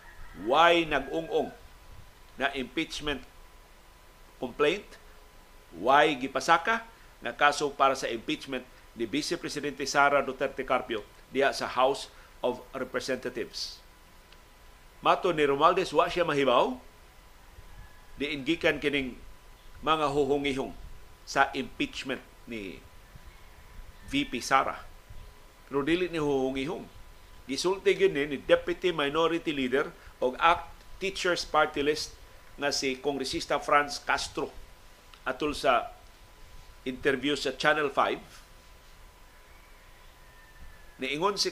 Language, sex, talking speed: Filipino, male, 95 wpm